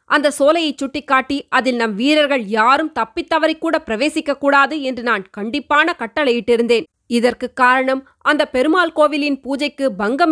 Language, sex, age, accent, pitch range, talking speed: Tamil, female, 20-39, native, 240-300 Hz, 130 wpm